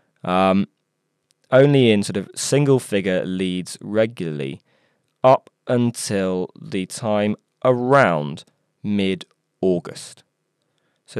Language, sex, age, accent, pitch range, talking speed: English, male, 20-39, British, 95-120 Hz, 80 wpm